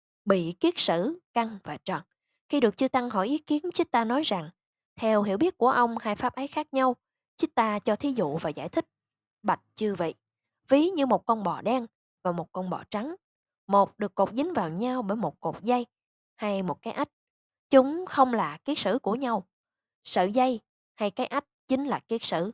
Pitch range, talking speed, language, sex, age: 190-265 Hz, 210 wpm, Vietnamese, female, 20-39